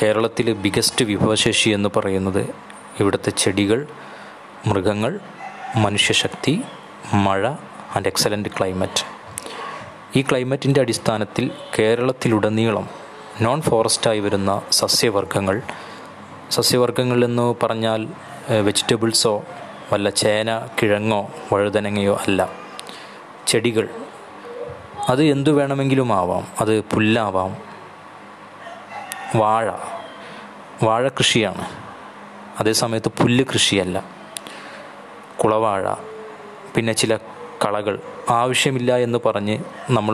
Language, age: Malayalam, 20-39